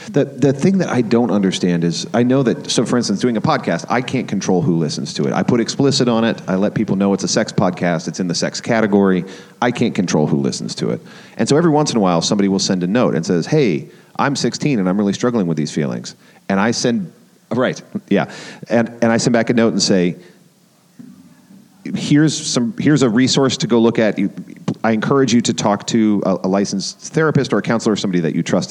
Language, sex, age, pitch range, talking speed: English, male, 40-59, 90-130 Hz, 240 wpm